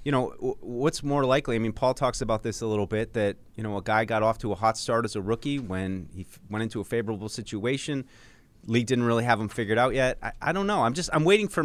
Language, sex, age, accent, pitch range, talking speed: English, male, 30-49, American, 105-130 Hz, 270 wpm